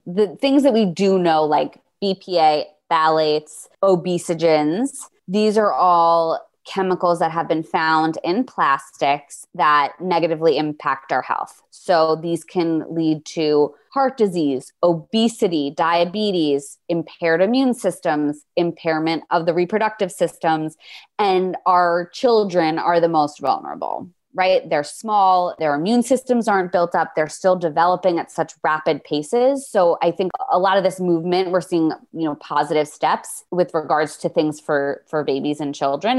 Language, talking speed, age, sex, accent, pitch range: English, 145 wpm, 20-39, female, American, 155-195 Hz